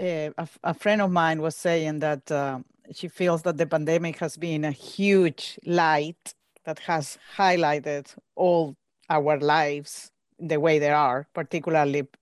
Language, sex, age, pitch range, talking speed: English, female, 40-59, 150-190 Hz, 145 wpm